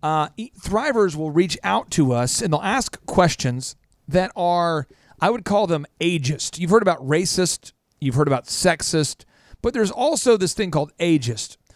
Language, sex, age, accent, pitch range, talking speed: English, male, 40-59, American, 145-215 Hz, 165 wpm